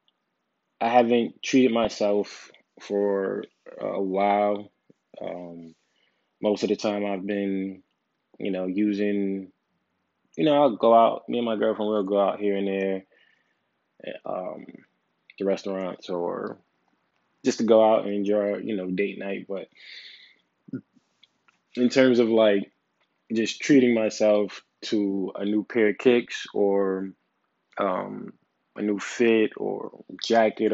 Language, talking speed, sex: English, 130 wpm, male